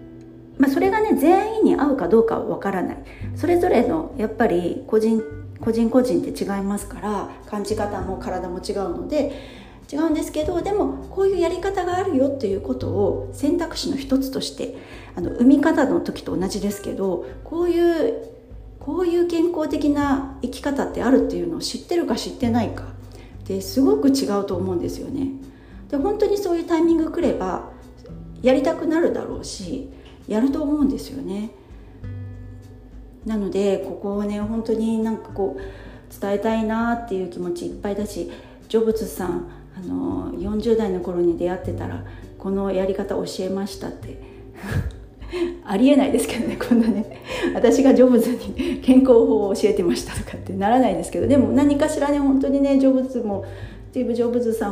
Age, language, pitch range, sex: 40-59, Japanese, 195-285 Hz, female